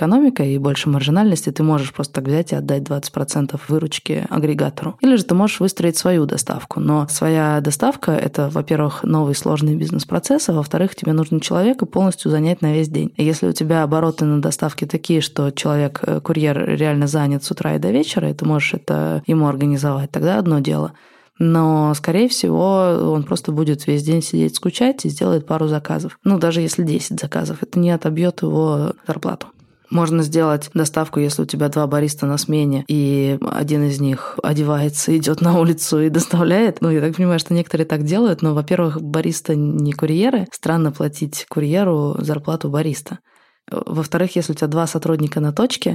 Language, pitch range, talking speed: Russian, 150-170 Hz, 180 wpm